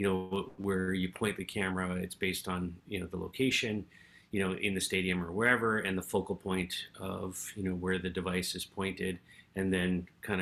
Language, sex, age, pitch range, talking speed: English, male, 30-49, 95-100 Hz, 205 wpm